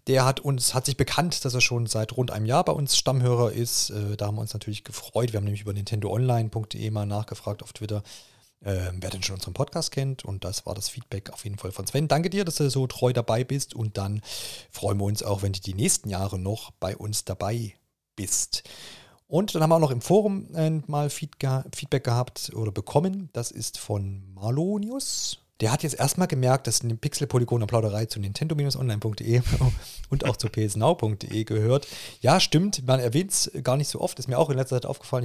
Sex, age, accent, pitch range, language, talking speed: male, 40-59, German, 105-135 Hz, German, 210 wpm